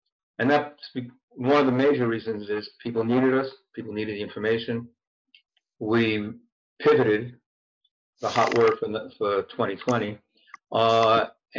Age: 50-69